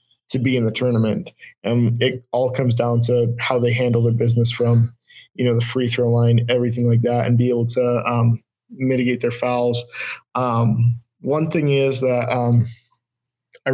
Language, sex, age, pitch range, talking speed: English, male, 20-39, 120-130 Hz, 180 wpm